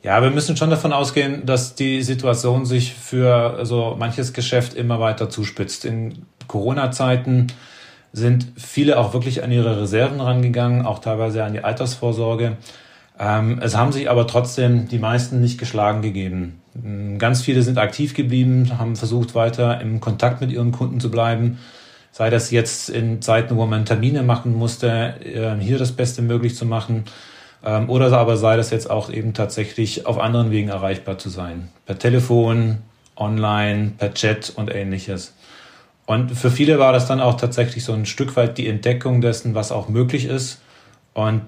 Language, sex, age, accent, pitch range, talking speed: German, male, 30-49, German, 110-125 Hz, 165 wpm